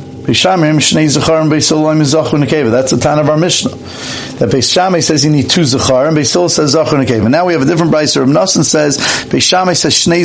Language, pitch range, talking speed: English, 125-160 Hz, 215 wpm